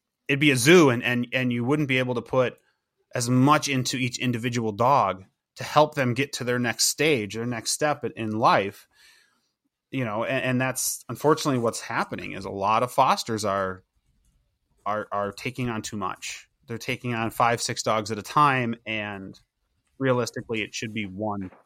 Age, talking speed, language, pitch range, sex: 30-49, 185 wpm, English, 115-150 Hz, male